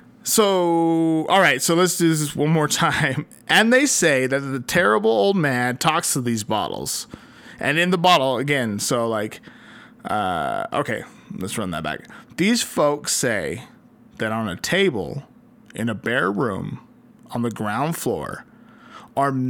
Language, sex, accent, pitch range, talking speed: English, male, American, 125-190 Hz, 155 wpm